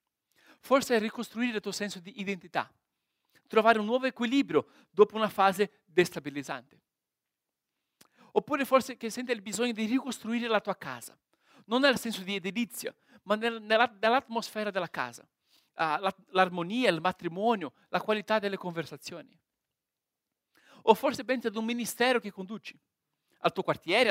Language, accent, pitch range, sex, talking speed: Italian, native, 200-255 Hz, male, 135 wpm